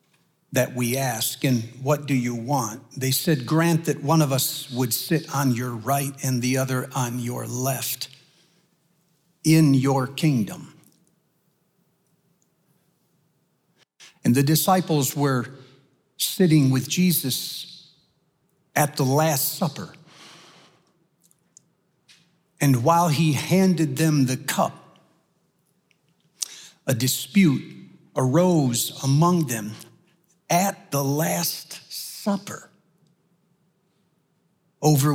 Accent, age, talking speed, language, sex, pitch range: American, 60-79, 95 wpm, English, male, 135-175 Hz